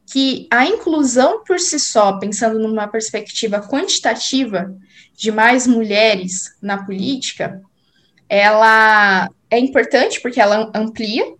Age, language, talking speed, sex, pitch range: 10-29, Portuguese, 110 wpm, female, 200-255 Hz